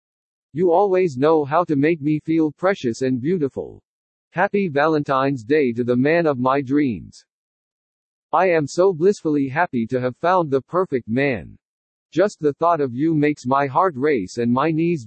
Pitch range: 130-170 Hz